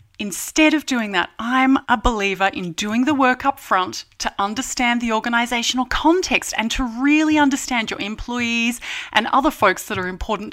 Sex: female